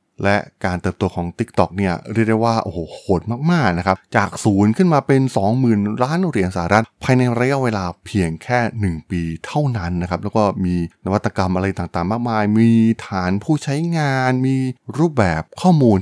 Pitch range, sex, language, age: 90-120 Hz, male, Thai, 20-39